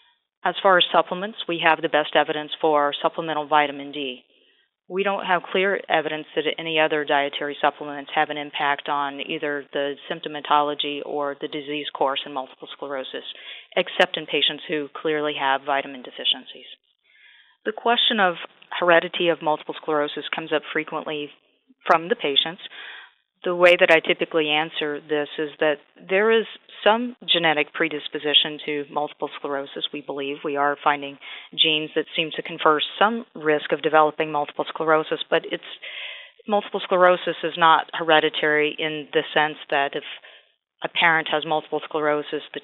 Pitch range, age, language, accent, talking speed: 145-170 Hz, 30-49, English, American, 155 wpm